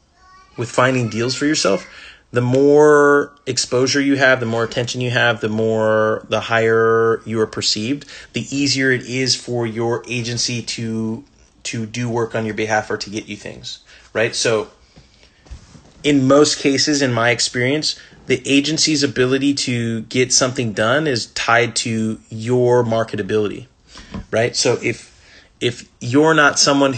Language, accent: English, American